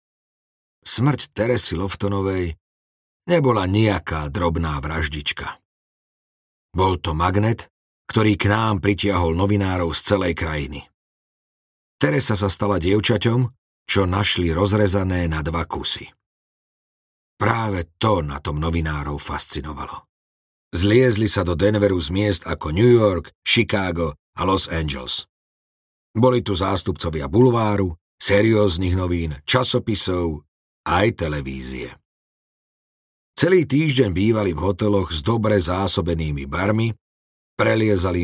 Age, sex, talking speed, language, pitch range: 40-59, male, 105 wpm, Slovak, 80-110 Hz